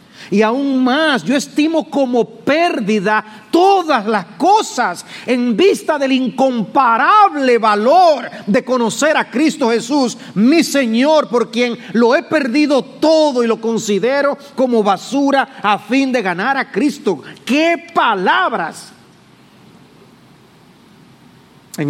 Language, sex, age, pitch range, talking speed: English, male, 40-59, 195-260 Hz, 115 wpm